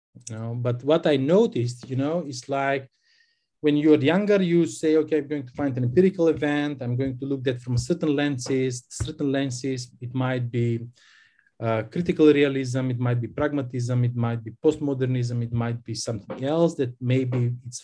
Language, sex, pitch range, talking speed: English, male, 120-155 Hz, 180 wpm